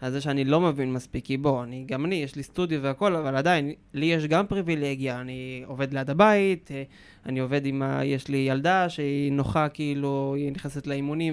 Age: 20-39